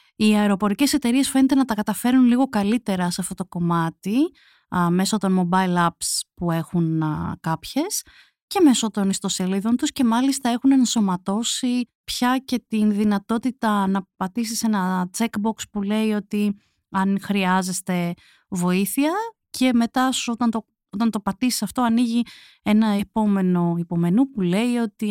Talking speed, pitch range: 140 wpm, 185-240 Hz